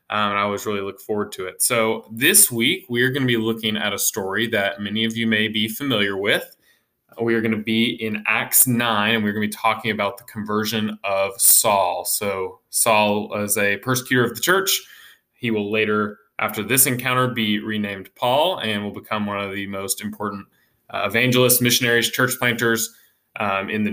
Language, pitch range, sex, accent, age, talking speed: English, 105-120 Hz, male, American, 20-39, 200 wpm